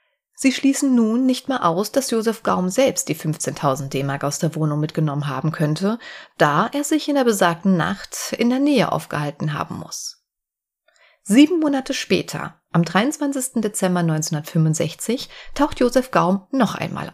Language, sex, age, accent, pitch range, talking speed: German, female, 30-49, German, 165-255 Hz, 155 wpm